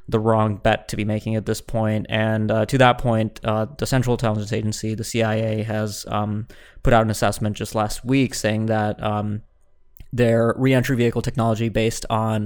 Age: 20-39